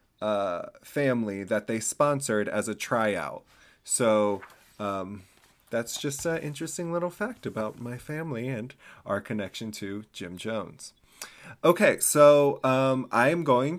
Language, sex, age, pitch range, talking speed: English, male, 30-49, 105-135 Hz, 135 wpm